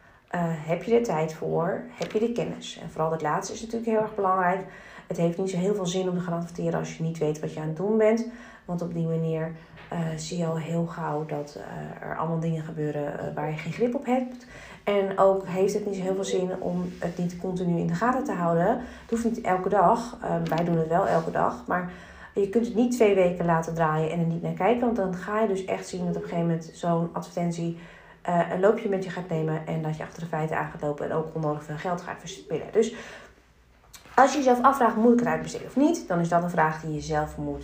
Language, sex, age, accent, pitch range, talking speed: Dutch, female, 30-49, Dutch, 160-210 Hz, 260 wpm